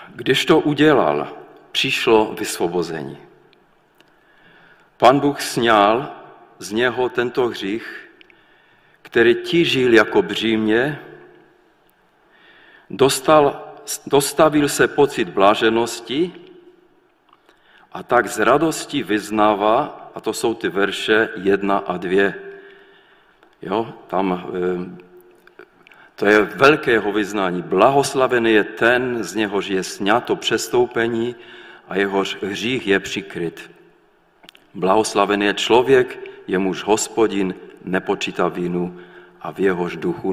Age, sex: 50-69, male